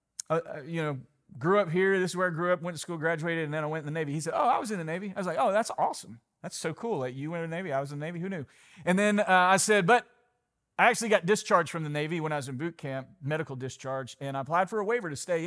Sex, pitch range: male, 140-195 Hz